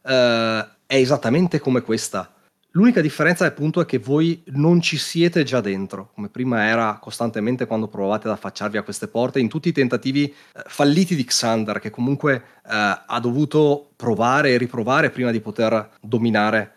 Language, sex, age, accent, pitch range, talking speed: Italian, male, 30-49, native, 110-145 Hz, 155 wpm